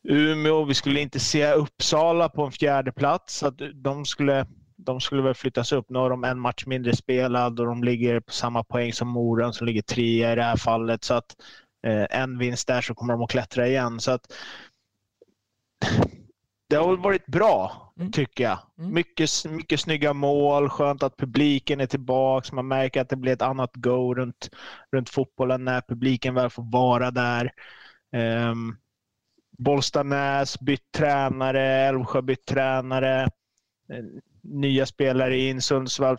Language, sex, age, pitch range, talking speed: English, male, 20-39, 125-140 Hz, 165 wpm